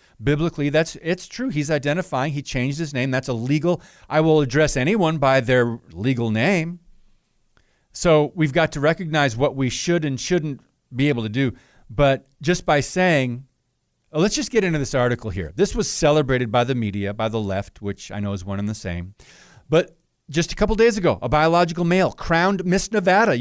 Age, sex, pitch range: 40-59, male, 125-180 Hz